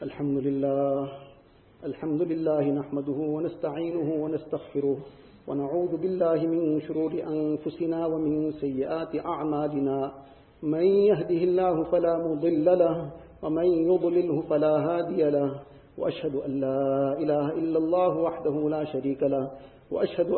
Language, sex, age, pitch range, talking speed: English, male, 50-69, 150-175 Hz, 110 wpm